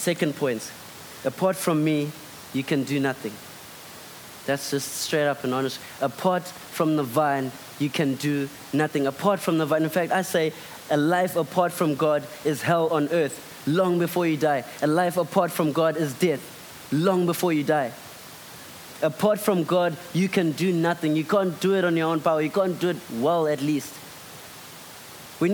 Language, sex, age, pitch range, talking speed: English, male, 20-39, 145-175 Hz, 185 wpm